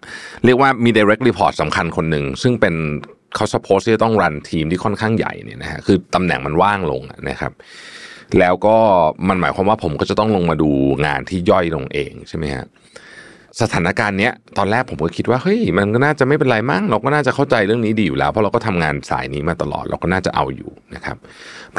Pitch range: 80-120 Hz